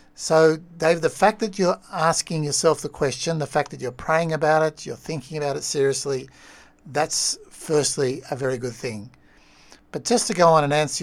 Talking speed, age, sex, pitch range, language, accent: 190 wpm, 60-79, male, 130-160 Hz, English, Australian